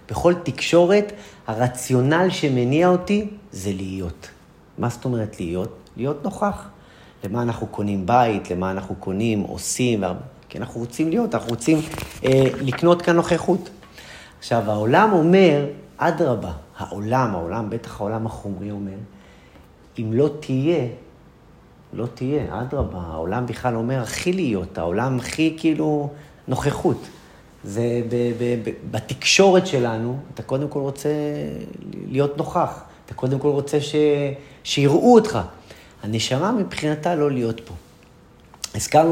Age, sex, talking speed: 40-59, male, 125 wpm